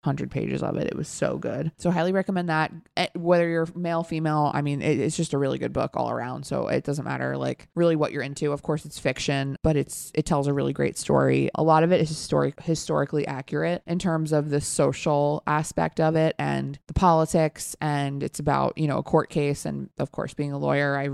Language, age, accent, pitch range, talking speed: English, 20-39, American, 140-170 Hz, 230 wpm